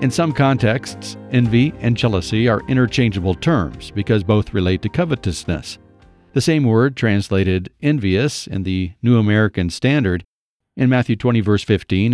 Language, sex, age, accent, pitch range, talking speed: English, male, 50-69, American, 100-125 Hz, 145 wpm